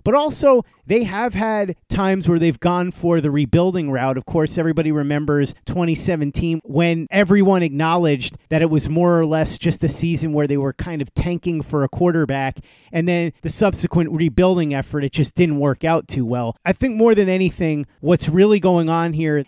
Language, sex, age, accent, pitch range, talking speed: English, male, 30-49, American, 145-175 Hz, 190 wpm